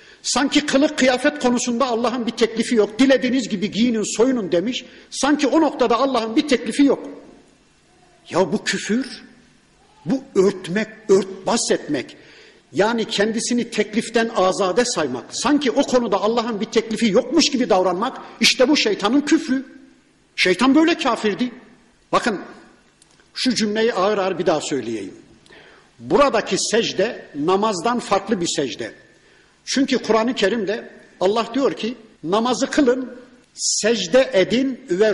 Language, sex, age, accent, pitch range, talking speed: Turkish, male, 50-69, native, 200-255 Hz, 125 wpm